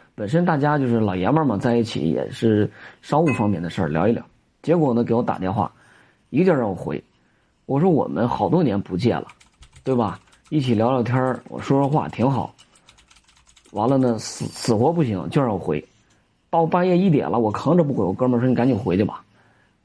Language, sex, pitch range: Chinese, male, 105-150 Hz